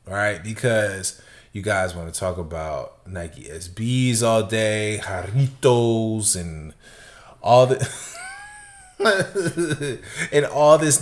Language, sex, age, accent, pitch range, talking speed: English, male, 20-39, American, 105-125 Hz, 110 wpm